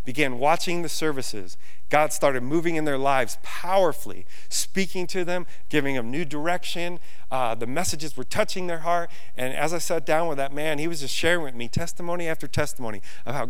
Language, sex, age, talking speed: English, male, 40-59, 195 wpm